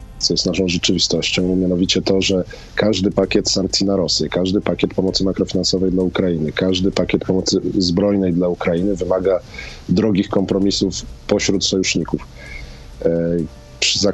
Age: 40-59